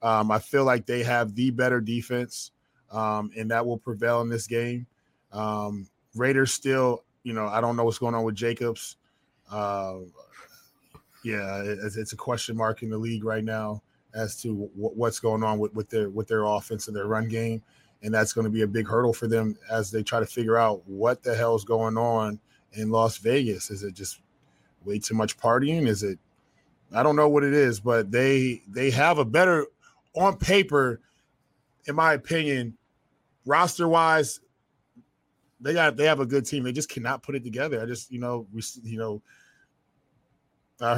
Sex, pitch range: male, 110-125 Hz